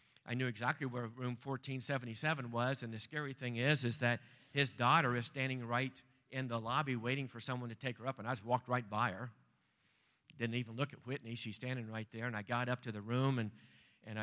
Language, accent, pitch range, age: English, American, 120-145 Hz, 40-59